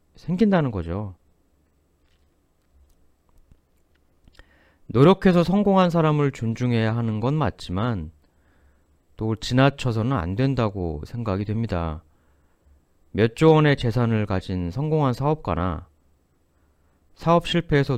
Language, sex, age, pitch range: Korean, male, 30-49, 75-120 Hz